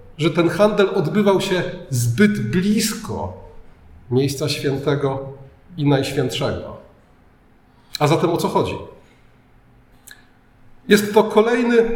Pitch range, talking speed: 140-190 Hz, 95 wpm